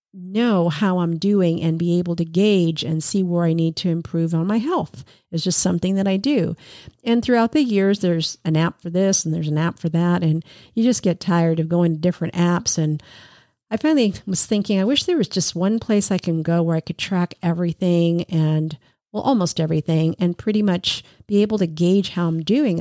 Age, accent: 50-69, American